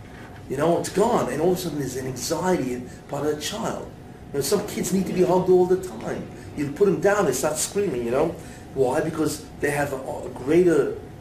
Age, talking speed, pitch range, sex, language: 50-69, 235 wpm, 140-200 Hz, male, English